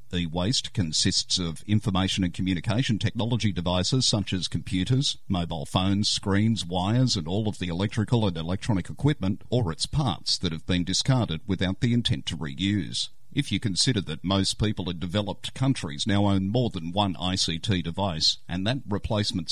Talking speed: 170 wpm